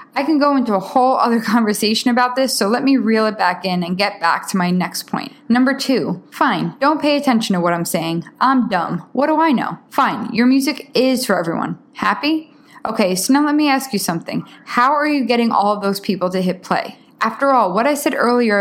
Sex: female